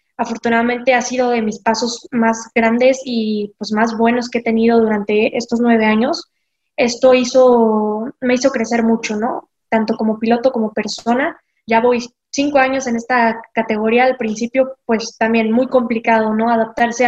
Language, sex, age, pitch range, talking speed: Spanish, female, 10-29, 225-245 Hz, 160 wpm